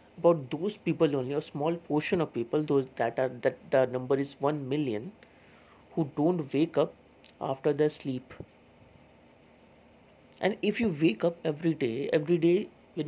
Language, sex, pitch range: English, male, 140-180 Hz